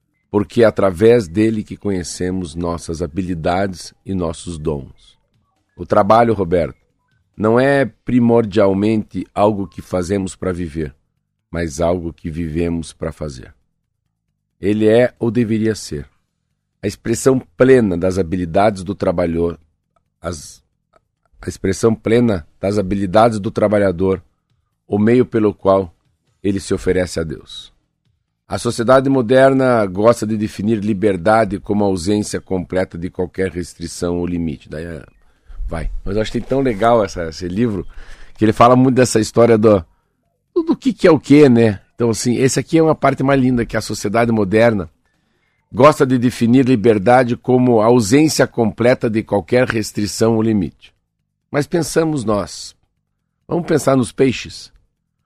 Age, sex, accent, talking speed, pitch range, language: 50-69, male, Brazilian, 140 wpm, 90-120 Hz, Portuguese